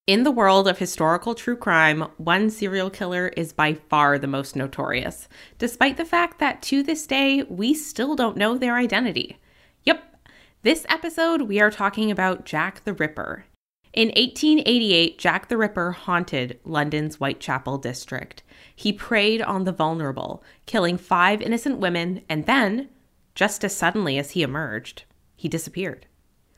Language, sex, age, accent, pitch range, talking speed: English, female, 20-39, American, 165-240 Hz, 150 wpm